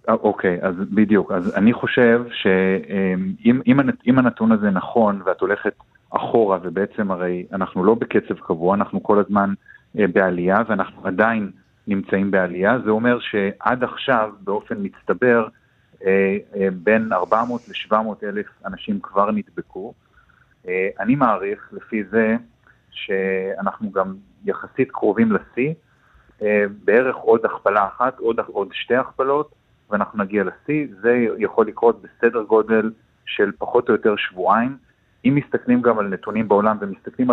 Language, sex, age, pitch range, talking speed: Hebrew, male, 30-49, 100-125 Hz, 125 wpm